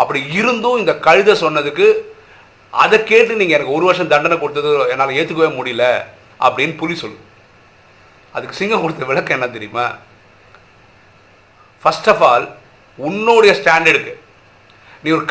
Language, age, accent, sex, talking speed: Tamil, 50-69, native, male, 75 wpm